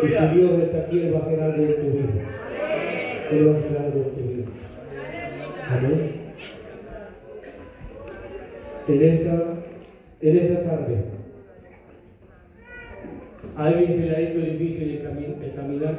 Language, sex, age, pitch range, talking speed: Spanish, male, 40-59, 135-160 Hz, 140 wpm